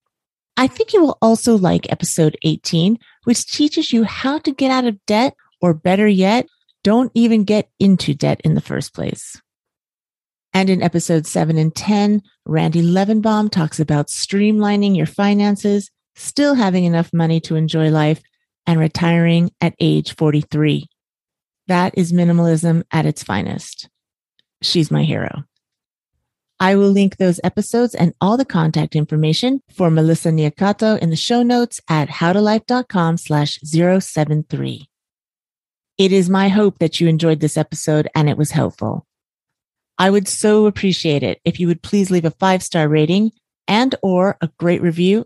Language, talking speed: English, 150 wpm